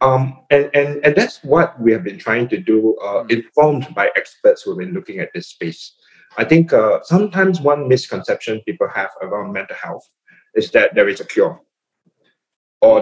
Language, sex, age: Thai, male, 20-39